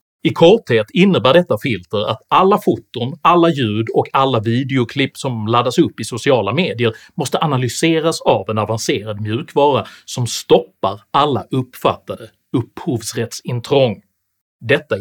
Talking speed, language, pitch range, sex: 125 wpm, Swedish, 115-165 Hz, male